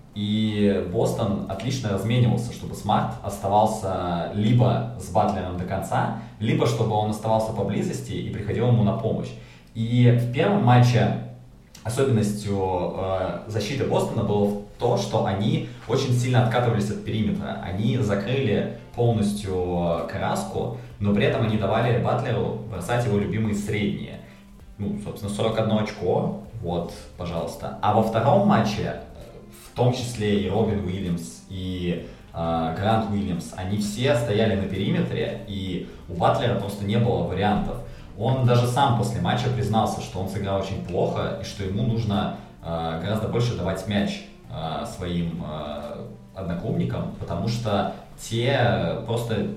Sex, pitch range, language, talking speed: male, 95-115 Hz, Russian, 135 wpm